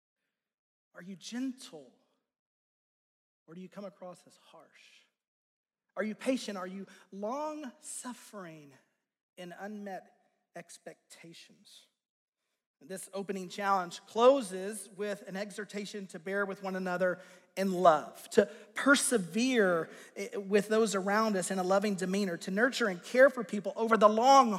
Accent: American